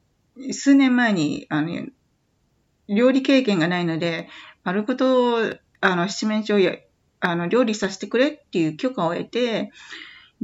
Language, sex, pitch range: Japanese, female, 175-250 Hz